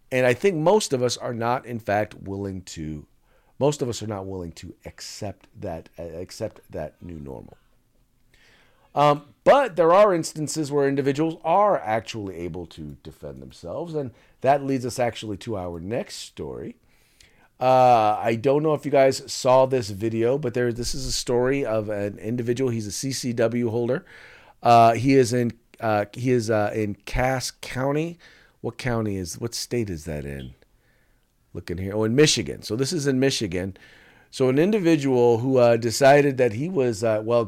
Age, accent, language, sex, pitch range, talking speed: 40-59, American, English, male, 100-135 Hz, 175 wpm